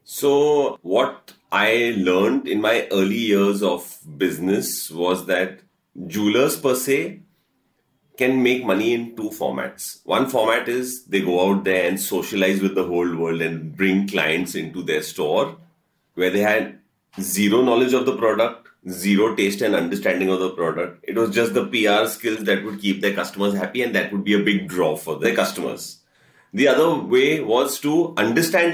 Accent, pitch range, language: Indian, 95-130 Hz, English